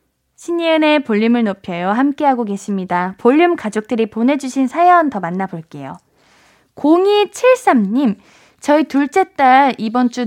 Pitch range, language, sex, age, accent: 225-310 Hz, Korean, female, 20-39, native